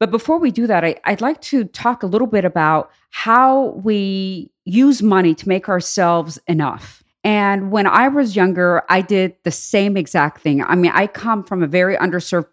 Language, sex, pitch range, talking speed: English, female, 180-240 Hz, 190 wpm